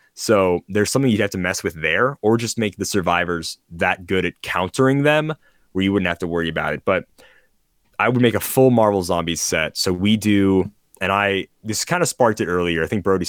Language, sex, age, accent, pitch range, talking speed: English, male, 20-39, American, 85-110 Hz, 225 wpm